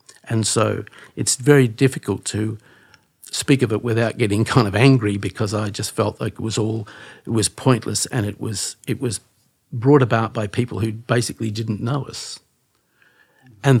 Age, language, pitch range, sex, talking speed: 50-69, English, 105-120 Hz, male, 175 wpm